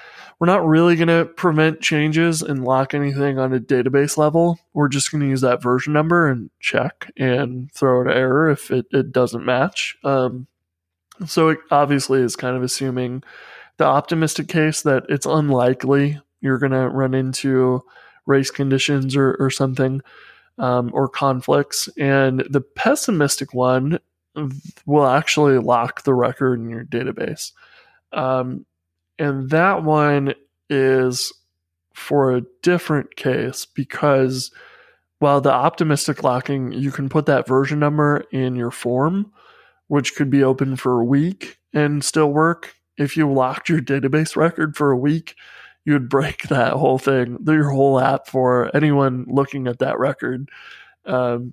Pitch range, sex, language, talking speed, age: 130-150 Hz, male, English, 150 wpm, 20-39